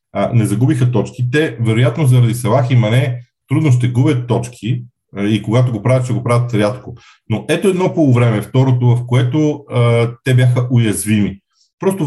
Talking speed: 170 wpm